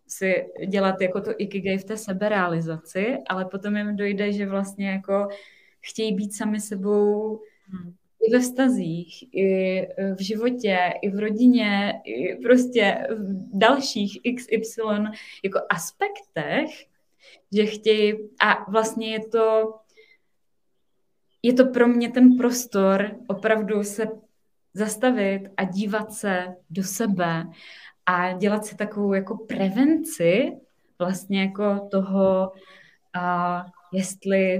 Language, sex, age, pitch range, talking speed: Czech, female, 20-39, 190-225 Hz, 115 wpm